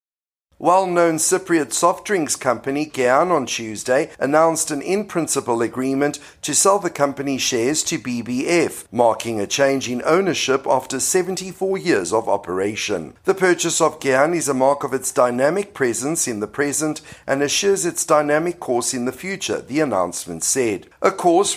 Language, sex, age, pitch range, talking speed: English, male, 50-69, 125-165 Hz, 155 wpm